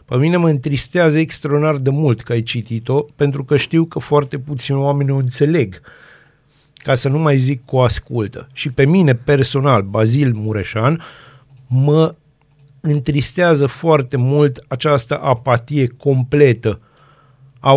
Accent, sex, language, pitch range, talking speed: native, male, Romanian, 130-160 Hz, 135 wpm